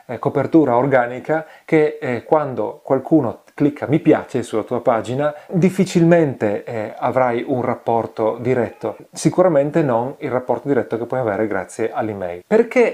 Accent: native